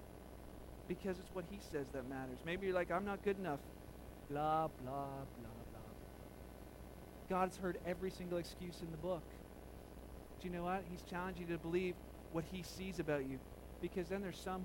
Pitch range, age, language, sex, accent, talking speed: 135-180 Hz, 40-59, English, male, American, 180 wpm